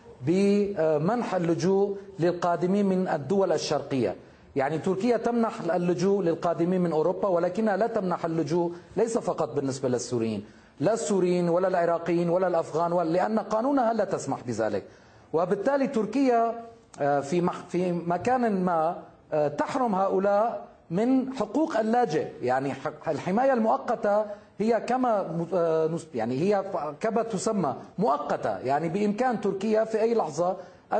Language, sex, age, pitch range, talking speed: Arabic, male, 40-59, 170-230 Hz, 115 wpm